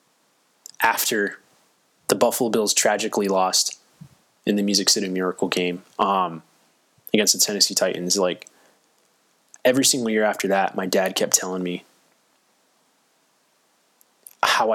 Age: 20-39